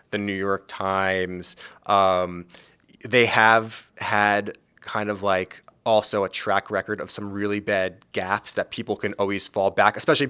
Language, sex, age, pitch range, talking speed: English, male, 20-39, 95-110 Hz, 155 wpm